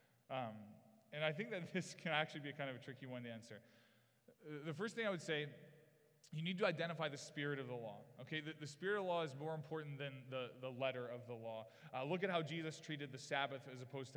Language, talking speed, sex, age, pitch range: English, 250 wpm, male, 20-39, 130-165 Hz